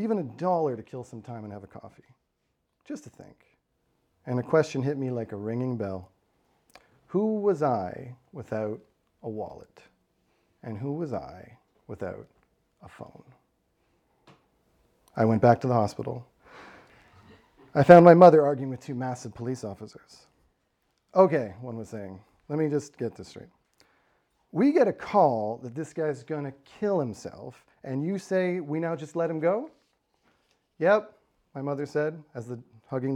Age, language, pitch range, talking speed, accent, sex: 40-59, English, 115-160 Hz, 160 wpm, American, male